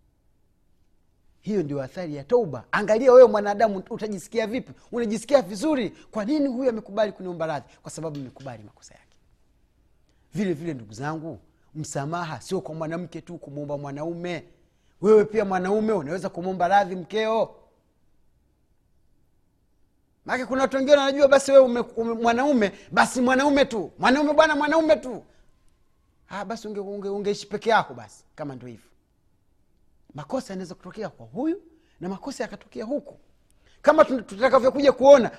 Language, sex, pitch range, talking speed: Swahili, male, 160-255 Hz, 125 wpm